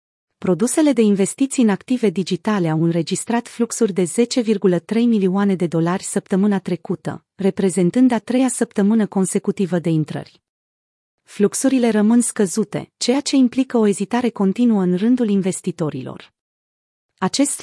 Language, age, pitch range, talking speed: Romanian, 30-49, 180-230 Hz, 125 wpm